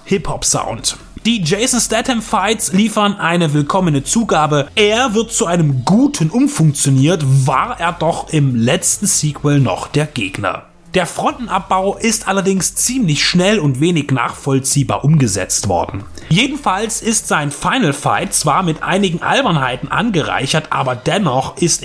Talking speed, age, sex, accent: 130 wpm, 30-49, male, German